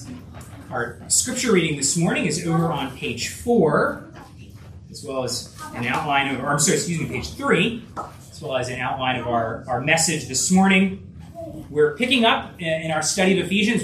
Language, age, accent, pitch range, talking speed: English, 30-49, American, 130-190 Hz, 175 wpm